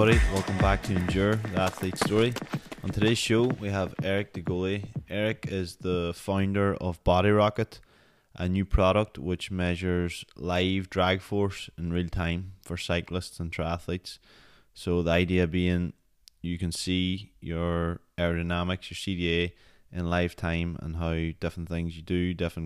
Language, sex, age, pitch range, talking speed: English, male, 20-39, 85-95 Hz, 150 wpm